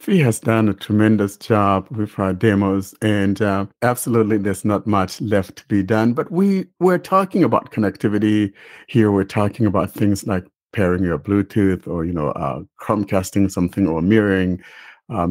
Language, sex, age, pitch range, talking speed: English, male, 50-69, 95-115 Hz, 170 wpm